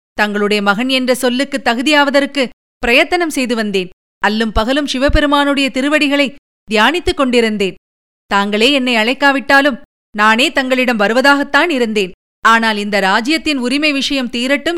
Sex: female